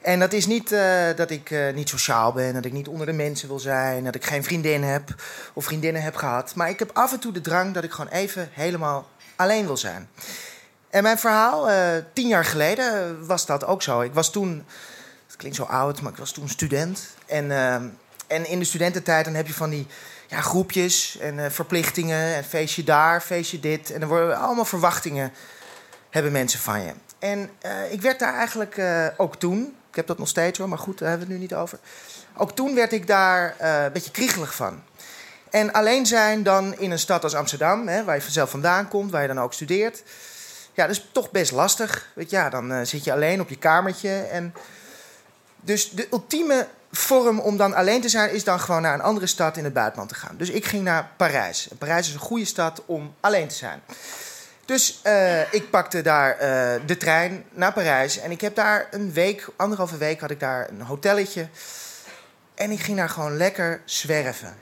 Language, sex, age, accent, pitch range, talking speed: Dutch, male, 20-39, Dutch, 150-205 Hz, 220 wpm